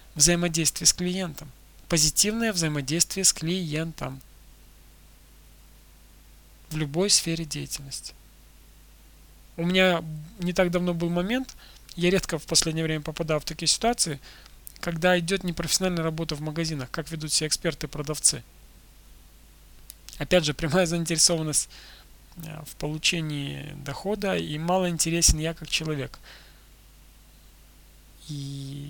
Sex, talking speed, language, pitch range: male, 105 wpm, Russian, 150-185 Hz